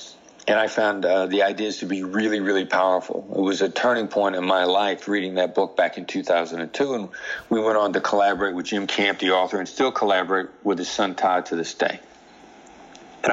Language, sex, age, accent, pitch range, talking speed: English, male, 60-79, American, 95-135 Hz, 210 wpm